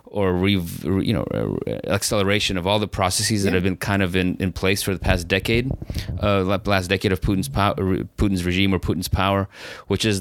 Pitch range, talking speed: 95-105 Hz, 200 wpm